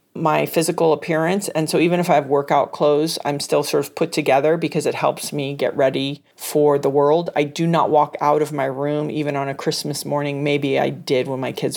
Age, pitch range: 40-59, 140-165 Hz